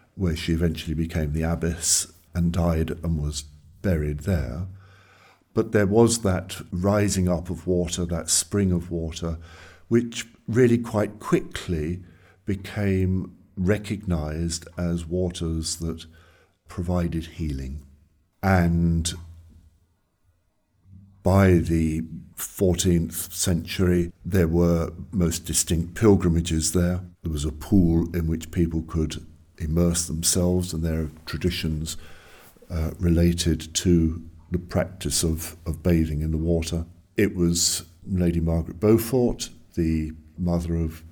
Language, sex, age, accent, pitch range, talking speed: English, male, 60-79, British, 80-90 Hz, 115 wpm